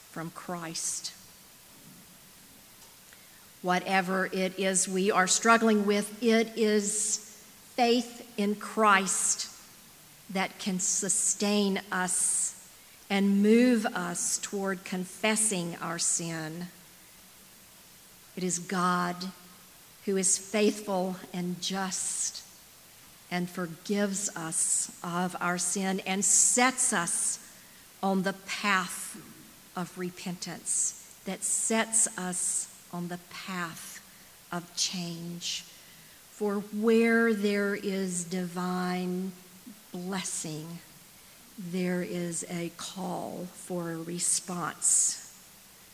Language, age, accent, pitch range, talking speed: English, 50-69, American, 180-215 Hz, 90 wpm